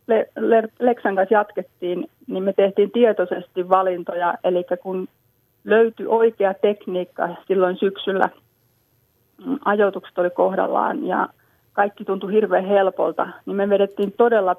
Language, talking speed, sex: Finnish, 110 wpm, female